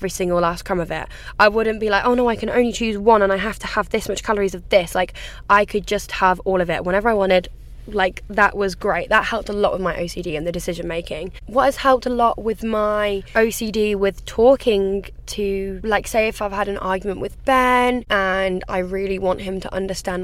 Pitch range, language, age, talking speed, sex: 185-220 Hz, English, 10-29, 235 wpm, female